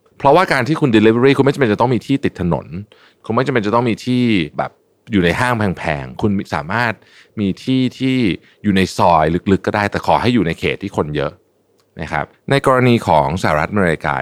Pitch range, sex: 80-125 Hz, male